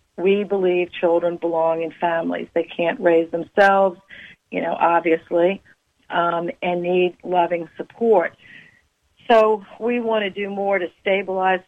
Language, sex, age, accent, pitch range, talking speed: English, female, 50-69, American, 170-185 Hz, 135 wpm